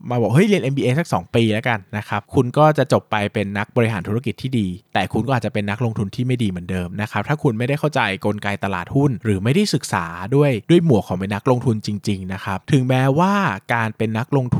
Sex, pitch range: male, 105-135 Hz